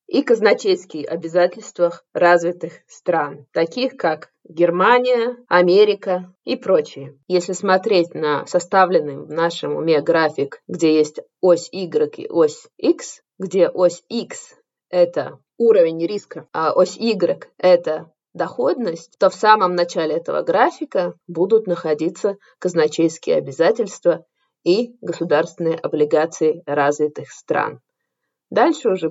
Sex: female